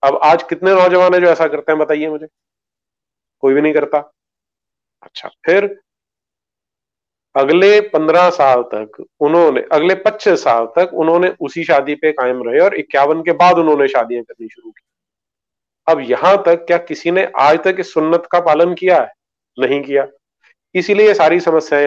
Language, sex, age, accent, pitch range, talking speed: English, male, 40-59, Indian, 145-175 Hz, 145 wpm